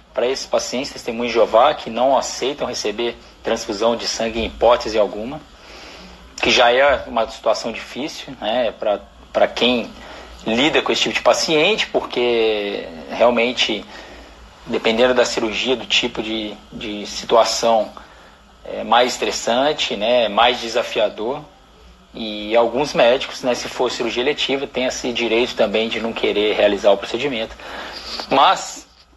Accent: Brazilian